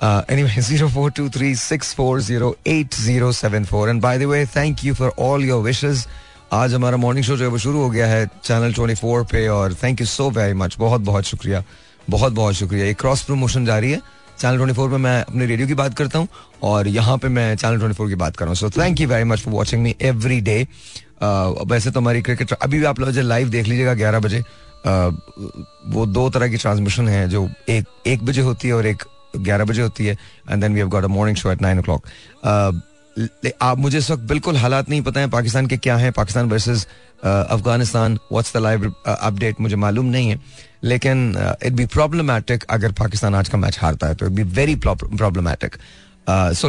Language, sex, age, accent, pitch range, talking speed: Hindi, male, 30-49, native, 105-130 Hz, 195 wpm